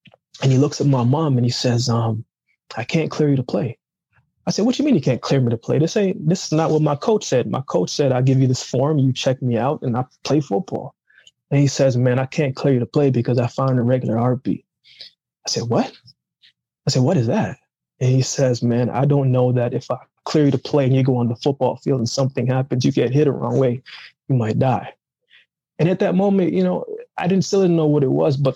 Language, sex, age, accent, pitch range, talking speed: English, male, 20-39, American, 125-150 Hz, 260 wpm